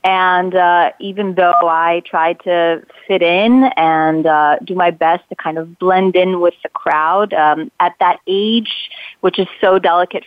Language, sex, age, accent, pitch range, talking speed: English, female, 30-49, American, 165-190 Hz, 175 wpm